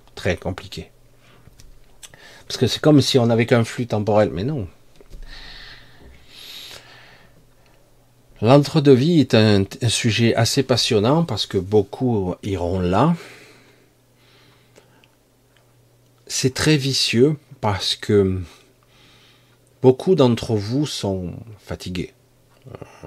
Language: French